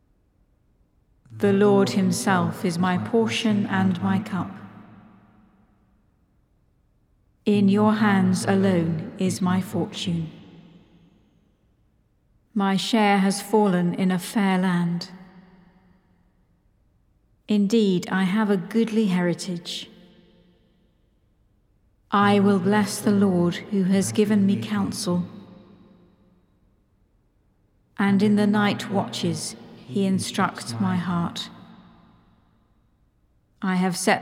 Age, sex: 50-69, female